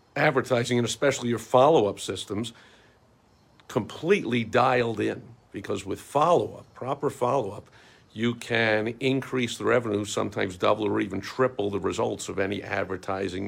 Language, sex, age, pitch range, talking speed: English, male, 50-69, 100-115 Hz, 130 wpm